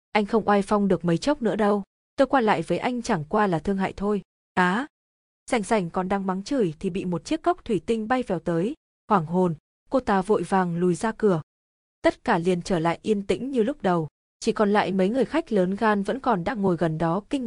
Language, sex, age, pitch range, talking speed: Vietnamese, female, 20-39, 185-225 Hz, 245 wpm